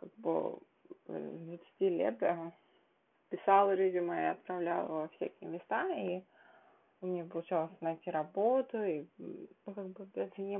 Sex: female